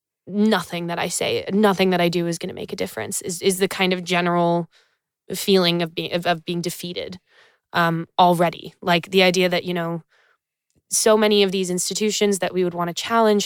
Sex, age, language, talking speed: female, 20-39, English, 205 wpm